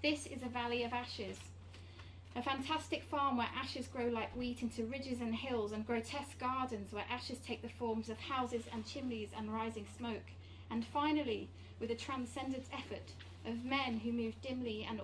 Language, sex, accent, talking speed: English, female, British, 180 wpm